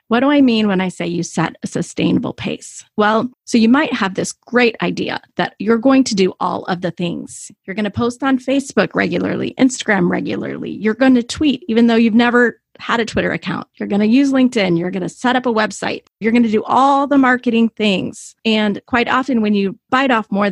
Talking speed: 230 wpm